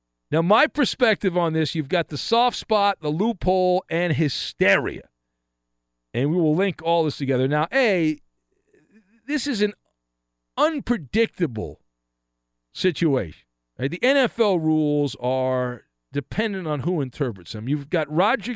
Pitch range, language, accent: 120-190 Hz, English, American